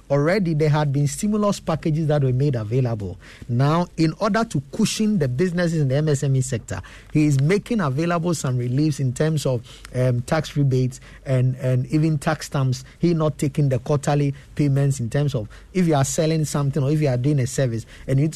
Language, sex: English, male